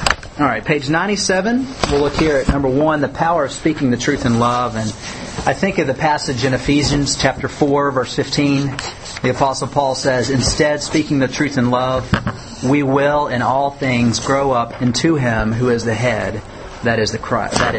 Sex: male